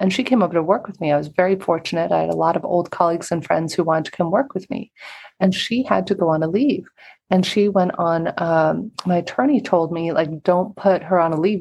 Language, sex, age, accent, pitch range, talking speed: English, female, 30-49, American, 170-195 Hz, 270 wpm